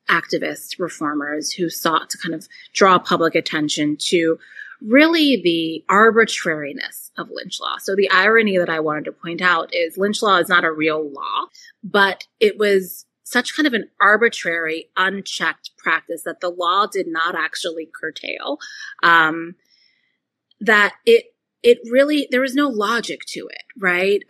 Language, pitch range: English, 170-235 Hz